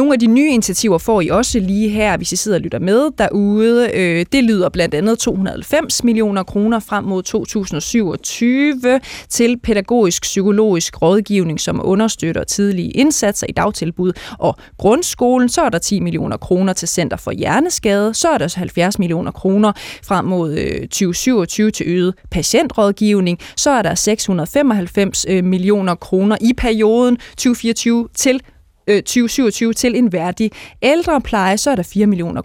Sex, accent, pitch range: female, native, 185-230 Hz